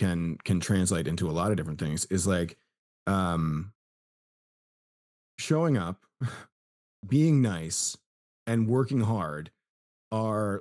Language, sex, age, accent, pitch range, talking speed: English, male, 30-49, American, 90-120 Hz, 115 wpm